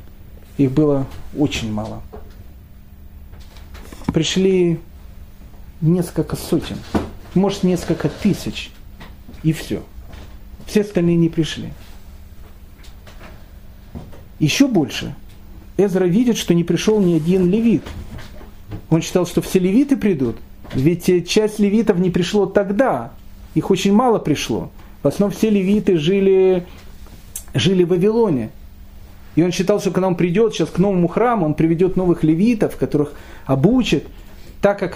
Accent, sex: native, male